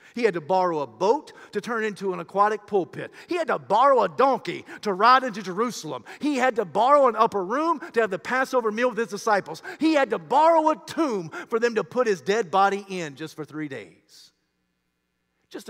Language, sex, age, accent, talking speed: English, male, 50-69, American, 215 wpm